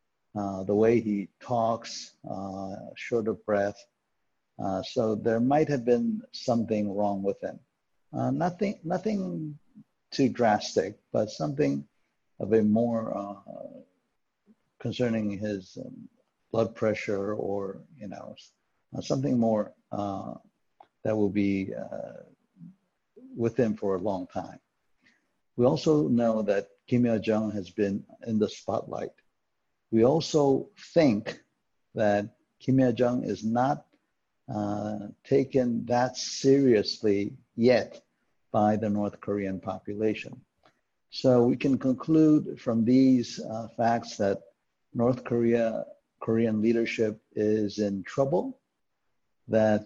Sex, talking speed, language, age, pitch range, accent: male, 120 wpm, English, 60-79, 105-130 Hz, American